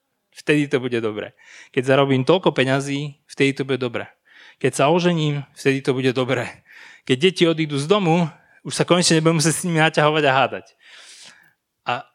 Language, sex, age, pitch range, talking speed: Slovak, male, 30-49, 130-160 Hz, 175 wpm